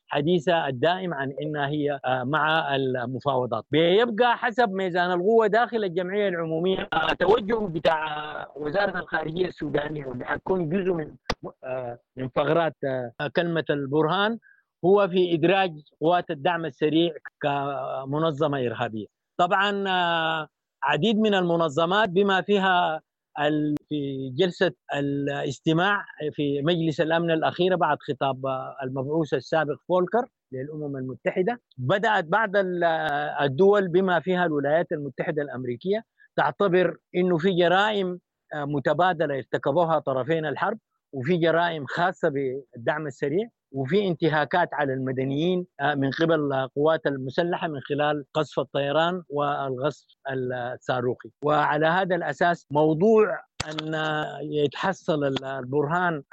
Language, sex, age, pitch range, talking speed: English, male, 50-69, 140-180 Hz, 100 wpm